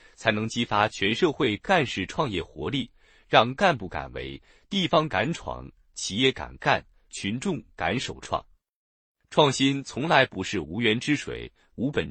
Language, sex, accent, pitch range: Chinese, male, native, 105-150 Hz